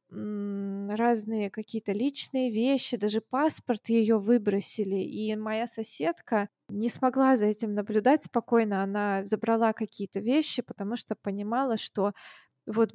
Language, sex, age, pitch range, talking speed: Russian, female, 20-39, 210-240 Hz, 120 wpm